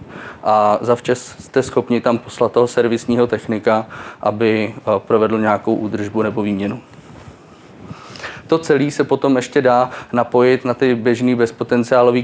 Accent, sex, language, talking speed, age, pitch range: native, male, Czech, 125 wpm, 20-39, 110-130 Hz